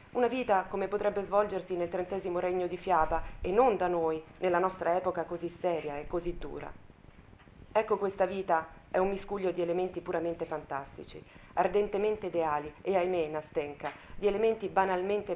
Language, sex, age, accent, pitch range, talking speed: Italian, female, 40-59, native, 160-195 Hz, 155 wpm